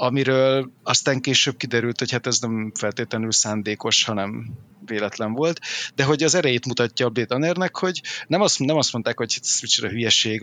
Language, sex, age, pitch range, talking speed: Hungarian, male, 30-49, 120-140 Hz, 165 wpm